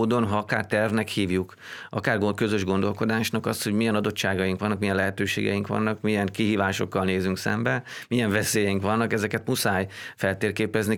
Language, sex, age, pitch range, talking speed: Hungarian, male, 30-49, 95-110 Hz, 150 wpm